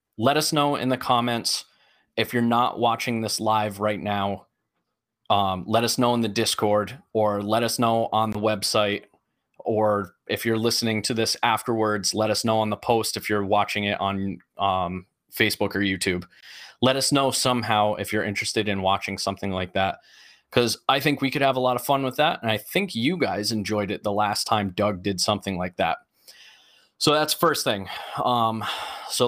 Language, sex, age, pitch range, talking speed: English, male, 20-39, 105-125 Hz, 195 wpm